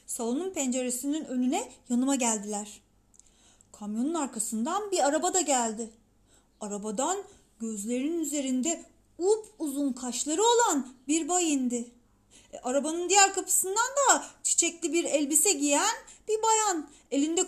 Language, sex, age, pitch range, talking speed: Turkish, female, 30-49, 240-365 Hz, 110 wpm